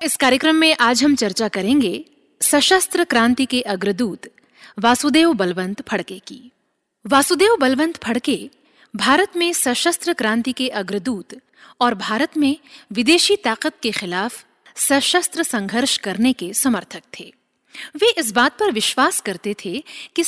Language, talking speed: Hindi, 135 wpm